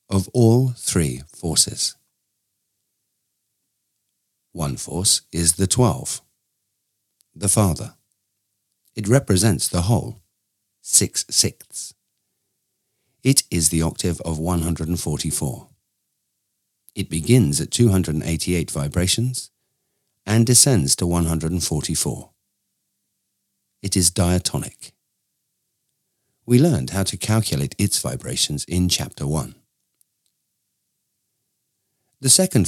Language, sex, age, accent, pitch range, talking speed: English, male, 50-69, British, 85-120 Hz, 85 wpm